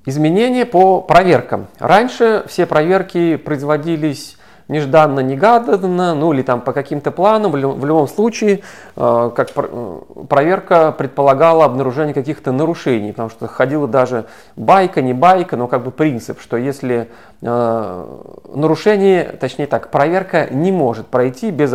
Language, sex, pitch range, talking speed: Russian, male, 125-175 Hz, 120 wpm